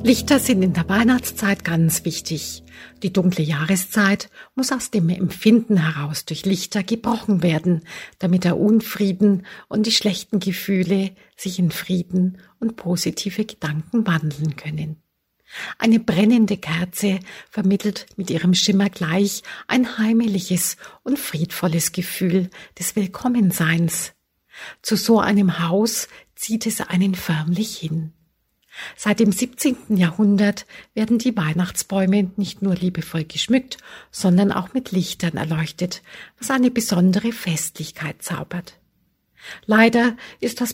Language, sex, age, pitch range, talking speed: German, female, 50-69, 175-215 Hz, 120 wpm